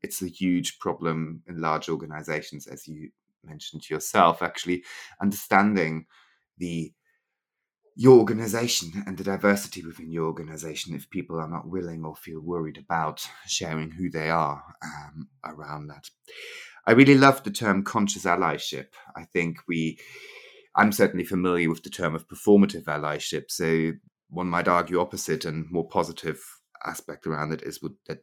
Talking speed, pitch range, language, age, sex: 150 wpm, 80-100 Hz, English, 30-49, male